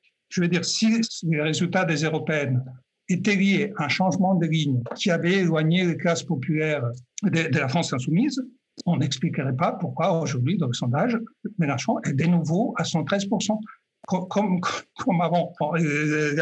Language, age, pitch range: French, 60-79, 145-200 Hz